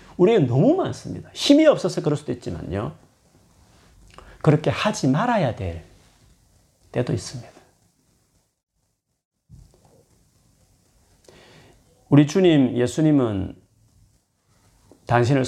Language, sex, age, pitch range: Korean, male, 40-59, 95-130 Hz